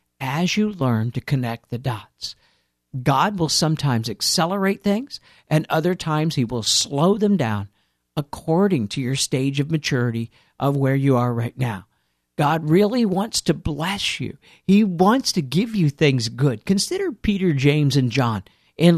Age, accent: 50-69, American